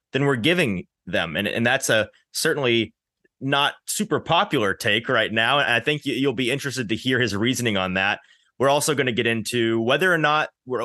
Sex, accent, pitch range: male, American, 110-140 Hz